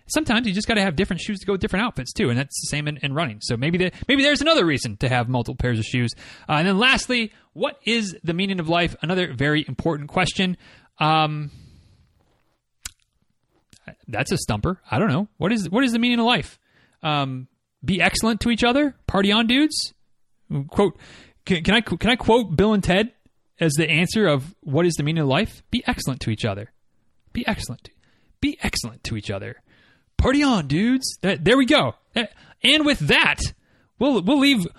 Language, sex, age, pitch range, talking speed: English, male, 30-49, 150-240 Hz, 200 wpm